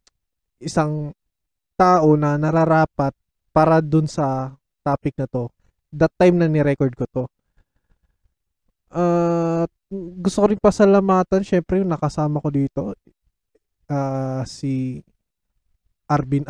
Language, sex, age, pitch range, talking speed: Filipino, male, 20-39, 130-165 Hz, 100 wpm